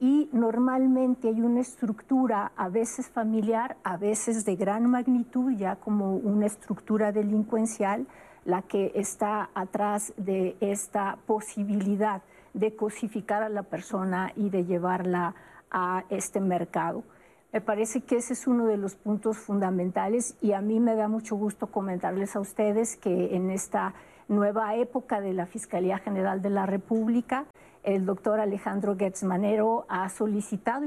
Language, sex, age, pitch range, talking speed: Spanish, female, 50-69, 195-230 Hz, 145 wpm